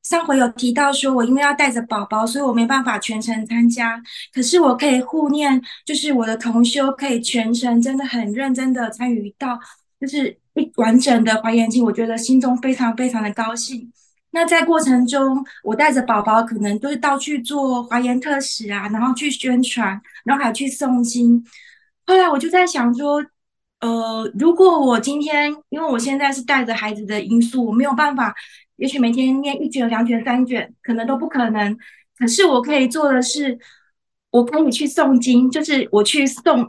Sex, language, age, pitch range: female, Chinese, 20-39, 230-280 Hz